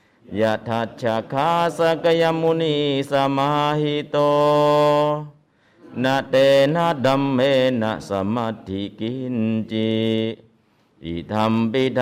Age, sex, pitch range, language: 50-69, male, 110-150 Hz, Thai